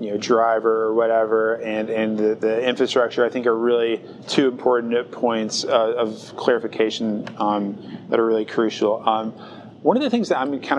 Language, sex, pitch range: English, male, 105-120 Hz